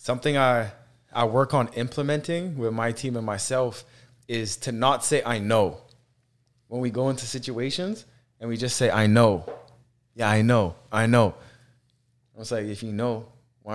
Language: English